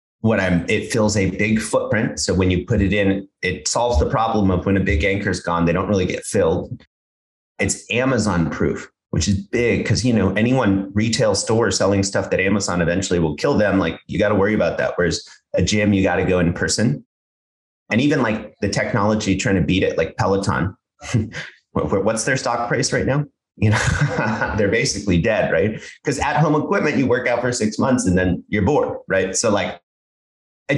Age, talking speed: 30-49, 205 wpm